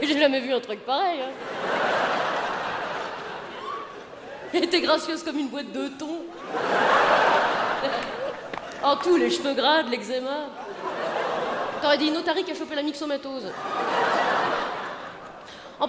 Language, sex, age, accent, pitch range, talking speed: French, female, 30-49, French, 270-345 Hz, 115 wpm